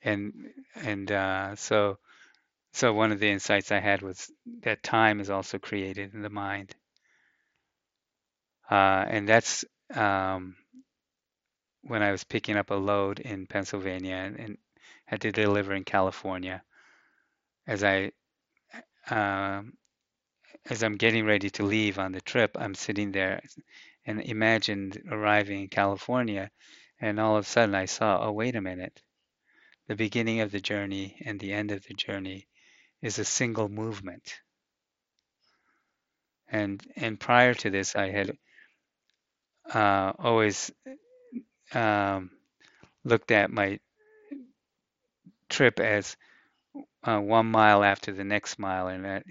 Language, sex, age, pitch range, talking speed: English, male, 20-39, 95-110 Hz, 135 wpm